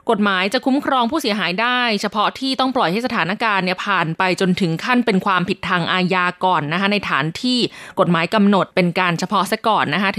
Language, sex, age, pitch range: Thai, female, 20-39, 185-245 Hz